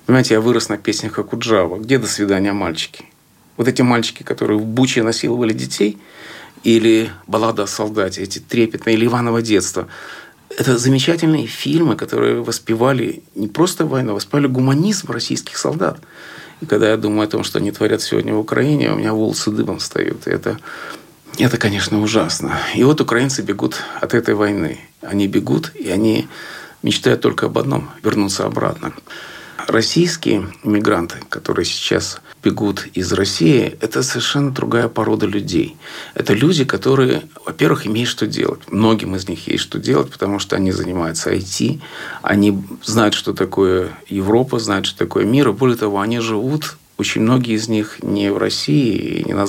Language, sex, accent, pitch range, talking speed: Russian, male, native, 100-130 Hz, 155 wpm